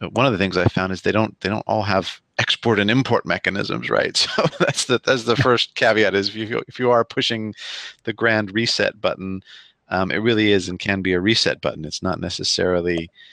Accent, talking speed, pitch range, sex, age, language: American, 205 wpm, 90-115 Hz, male, 40-59, English